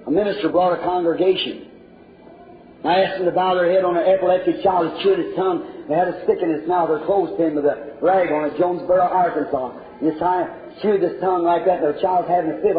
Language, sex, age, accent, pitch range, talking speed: English, male, 40-59, American, 165-200 Hz, 240 wpm